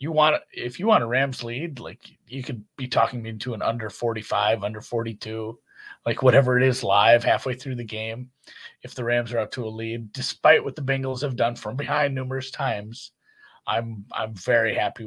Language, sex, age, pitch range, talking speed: English, male, 30-49, 110-135 Hz, 205 wpm